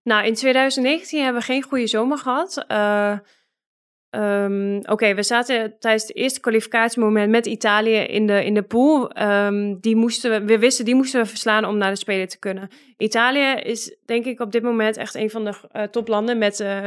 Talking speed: 205 wpm